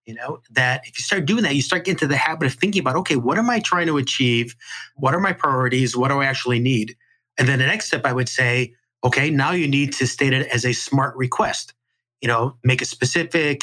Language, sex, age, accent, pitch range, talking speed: English, male, 30-49, American, 125-150 Hz, 250 wpm